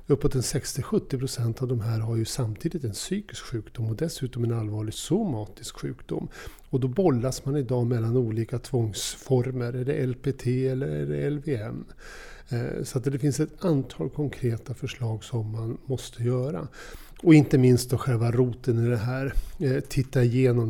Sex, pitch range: male, 115-135 Hz